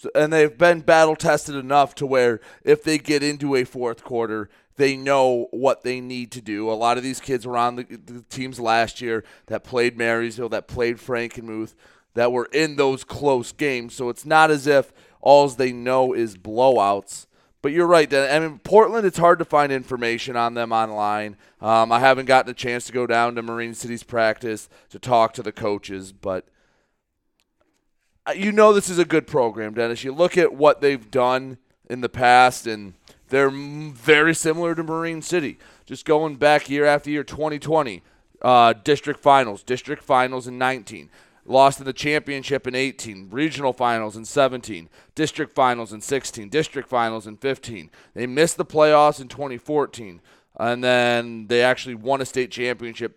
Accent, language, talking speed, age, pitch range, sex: American, English, 180 wpm, 30-49, 115-145 Hz, male